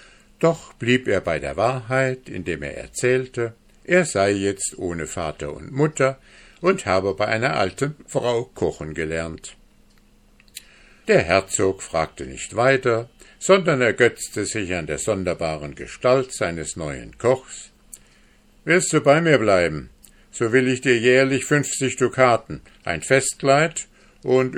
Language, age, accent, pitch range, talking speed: German, 60-79, German, 95-135 Hz, 130 wpm